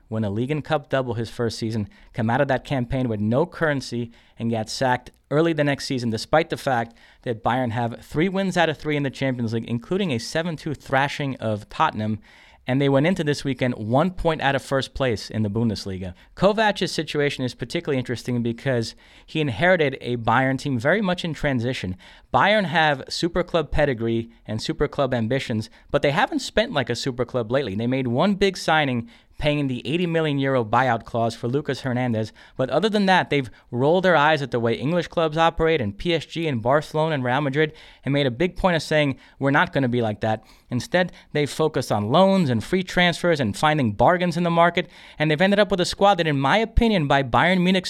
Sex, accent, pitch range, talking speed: male, American, 120-165 Hz, 215 wpm